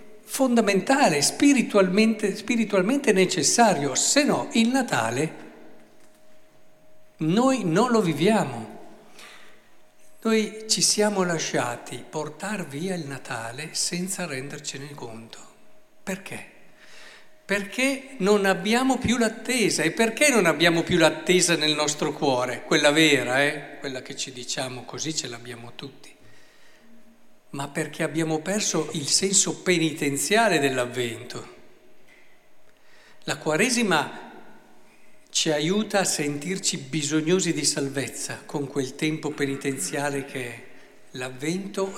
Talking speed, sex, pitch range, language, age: 105 wpm, male, 150-210 Hz, Italian, 60-79